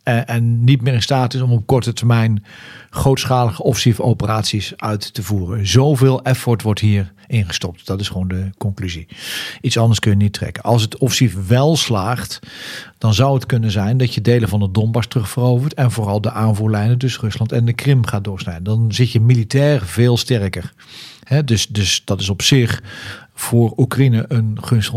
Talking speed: 185 wpm